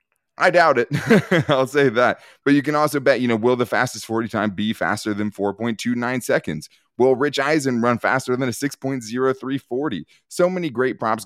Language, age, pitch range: English, 20-39, 100-130 Hz